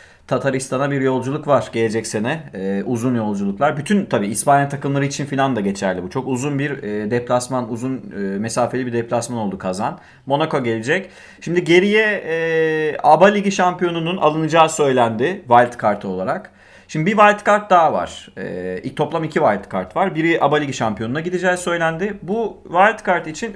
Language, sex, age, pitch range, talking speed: Turkish, male, 30-49, 120-195 Hz, 155 wpm